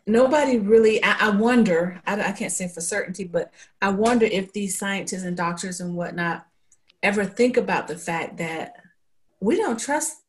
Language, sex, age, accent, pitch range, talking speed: English, female, 40-59, American, 180-240 Hz, 165 wpm